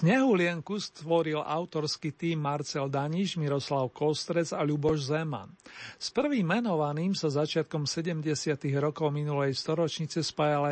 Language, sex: Slovak, male